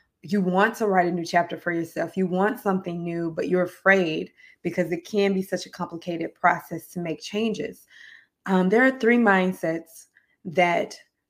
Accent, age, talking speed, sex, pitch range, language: American, 20-39, 175 wpm, female, 170-195 Hz, English